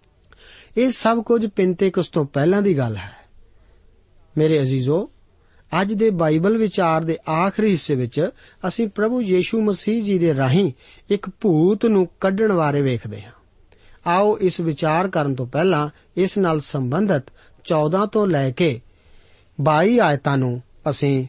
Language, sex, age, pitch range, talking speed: Punjabi, male, 50-69, 135-200 Hz, 145 wpm